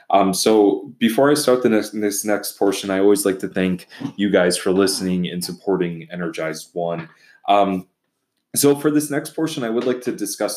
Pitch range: 95-110 Hz